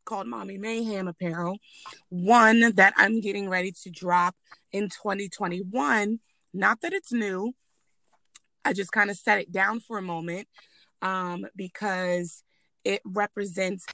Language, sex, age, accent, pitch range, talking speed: English, female, 20-39, American, 185-225 Hz, 135 wpm